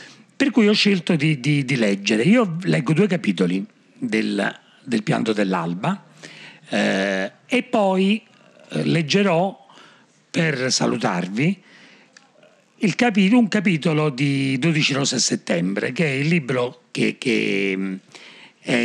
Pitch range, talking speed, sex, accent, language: 125-190 Hz, 120 wpm, male, native, Italian